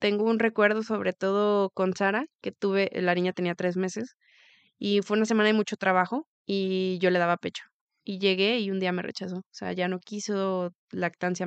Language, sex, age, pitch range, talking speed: Spanish, female, 20-39, 180-210 Hz, 205 wpm